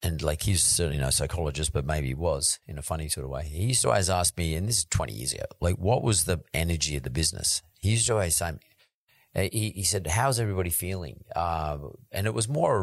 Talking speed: 250 wpm